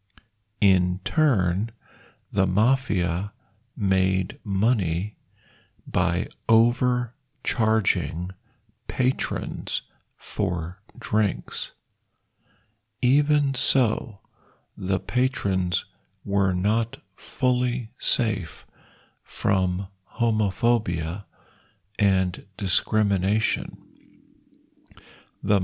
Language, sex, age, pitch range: Thai, male, 50-69, 95-115 Hz